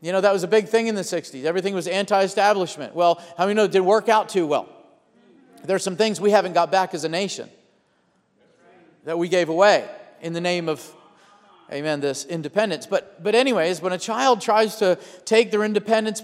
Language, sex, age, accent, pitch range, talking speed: English, male, 40-59, American, 180-220 Hz, 205 wpm